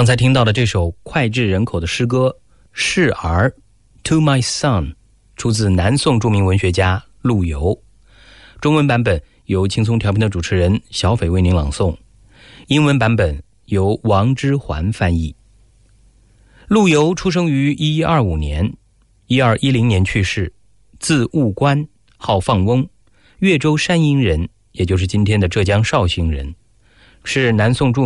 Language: English